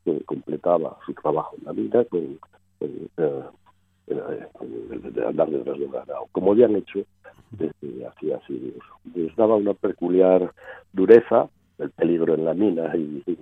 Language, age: Spanish, 60-79